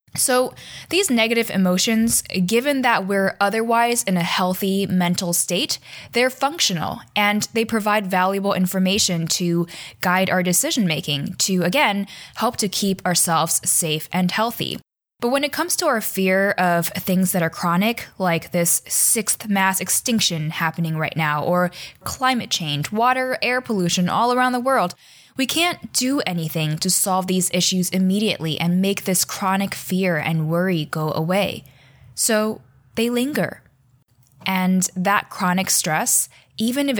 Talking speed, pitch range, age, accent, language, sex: 150 wpm, 170-225 Hz, 10-29, American, English, female